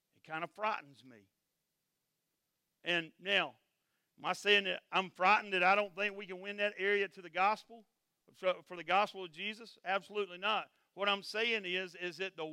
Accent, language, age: American, English, 50-69